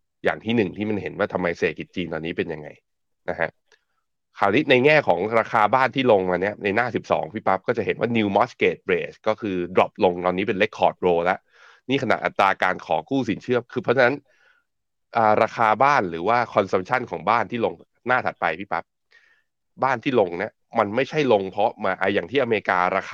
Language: Thai